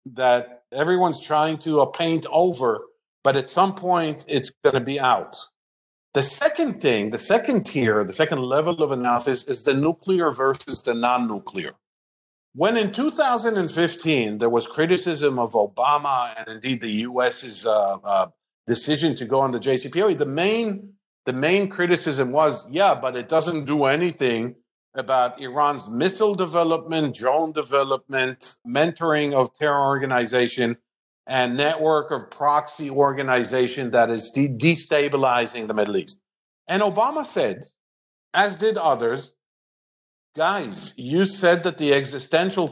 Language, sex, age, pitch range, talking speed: English, male, 50-69, 130-175 Hz, 140 wpm